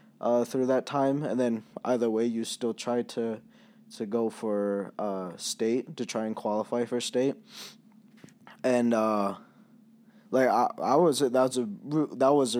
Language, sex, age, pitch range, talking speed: English, male, 20-39, 110-155 Hz, 160 wpm